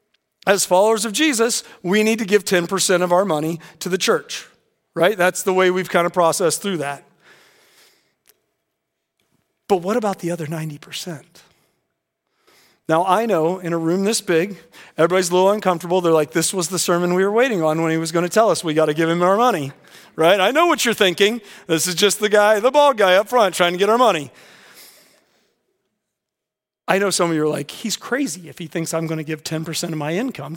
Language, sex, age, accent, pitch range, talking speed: English, male, 40-59, American, 160-200 Hz, 210 wpm